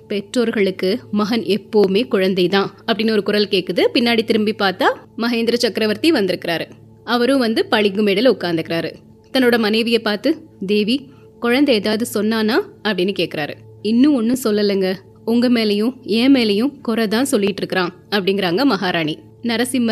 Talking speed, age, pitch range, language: 90 wpm, 20-39, 200-270 Hz, Tamil